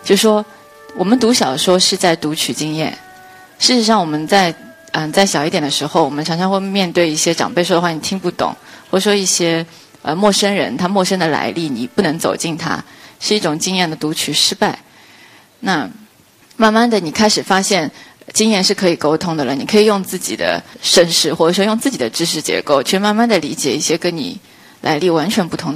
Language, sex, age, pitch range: Chinese, female, 20-39, 165-215 Hz